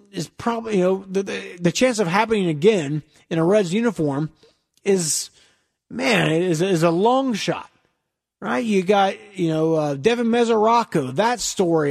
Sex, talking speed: male, 165 wpm